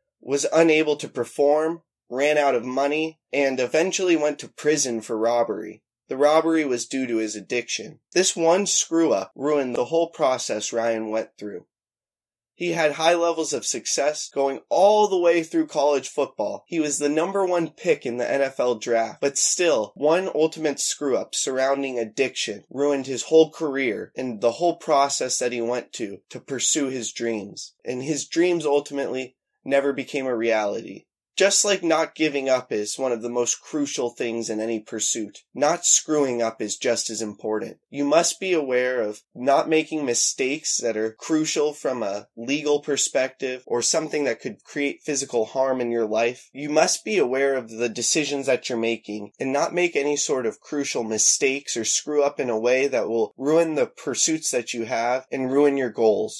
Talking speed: 180 wpm